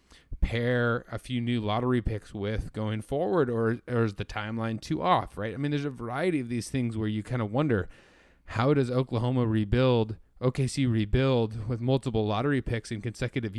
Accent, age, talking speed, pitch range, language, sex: American, 30-49, 185 wpm, 110-130 Hz, English, male